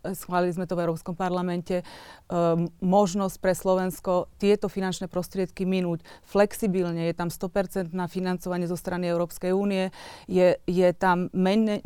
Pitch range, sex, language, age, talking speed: 175-190 Hz, female, Slovak, 30-49, 140 wpm